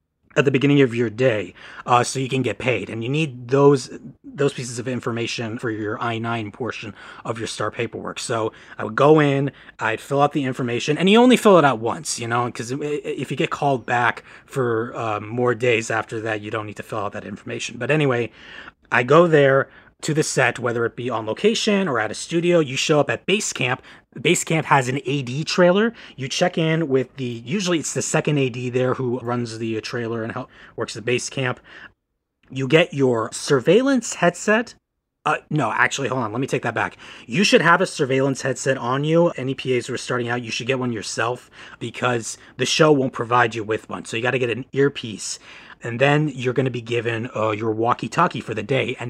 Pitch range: 115-150 Hz